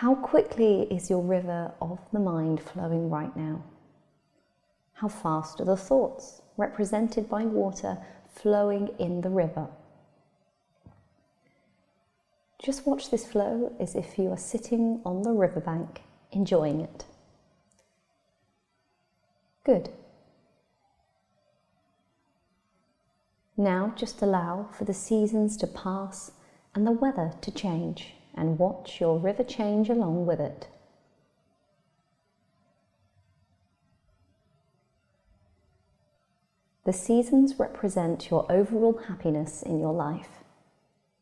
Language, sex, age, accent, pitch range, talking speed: English, female, 30-49, British, 160-215 Hz, 100 wpm